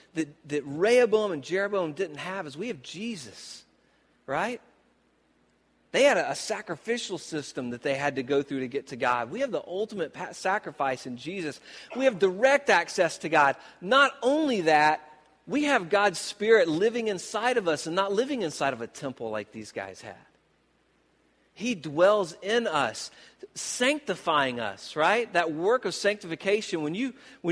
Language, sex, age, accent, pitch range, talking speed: English, male, 40-59, American, 145-210 Hz, 165 wpm